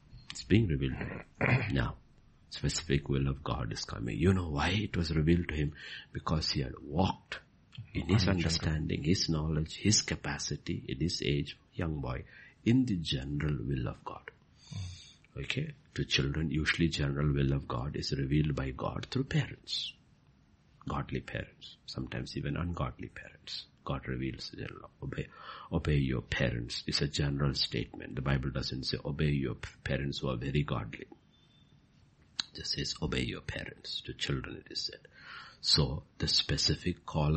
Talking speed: 160 wpm